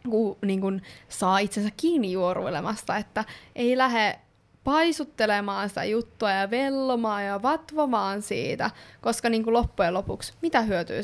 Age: 20-39